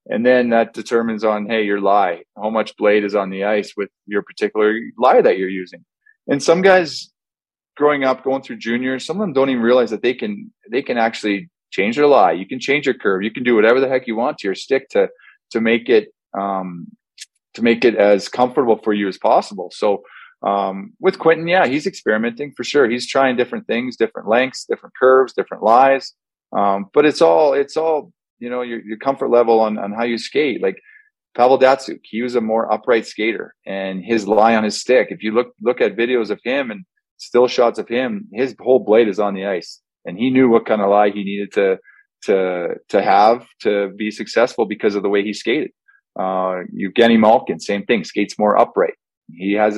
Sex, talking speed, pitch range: male, 215 wpm, 105-140 Hz